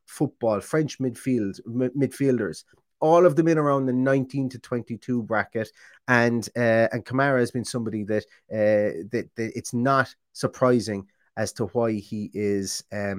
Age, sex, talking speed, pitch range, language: 30-49, male, 150 wpm, 115-155 Hz, English